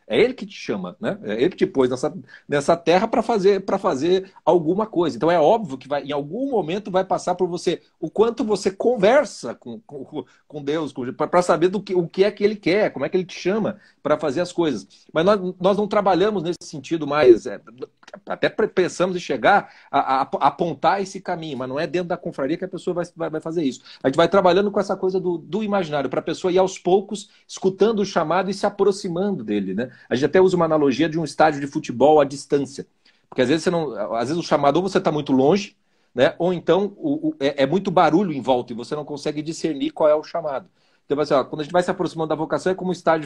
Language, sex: Portuguese, male